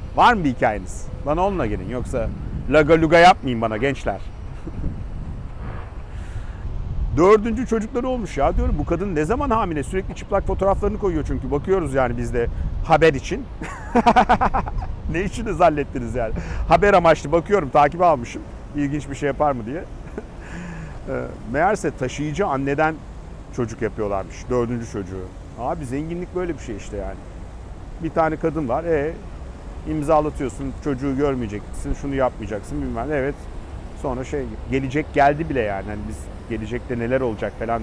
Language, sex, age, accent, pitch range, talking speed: Turkish, male, 50-69, native, 105-155 Hz, 140 wpm